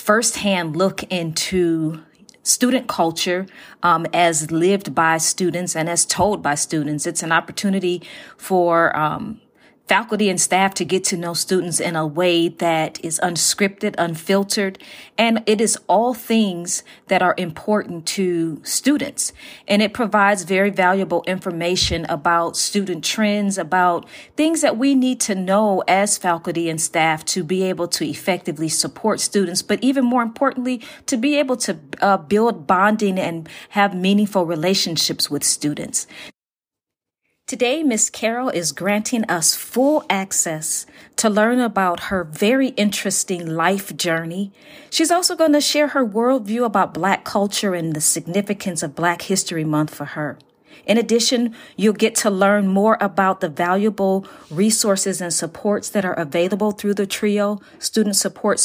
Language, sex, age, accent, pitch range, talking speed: English, female, 40-59, American, 170-215 Hz, 150 wpm